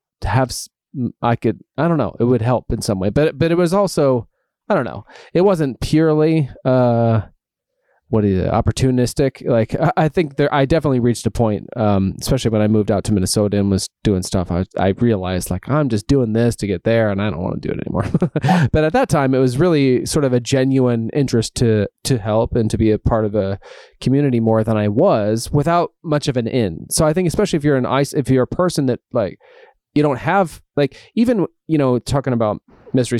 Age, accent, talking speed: 30-49, American, 225 wpm